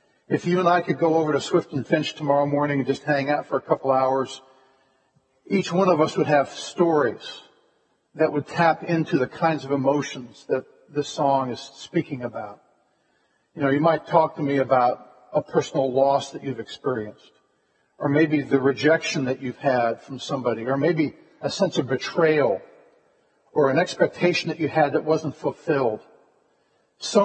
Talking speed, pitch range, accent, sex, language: 180 wpm, 140-175 Hz, American, male, English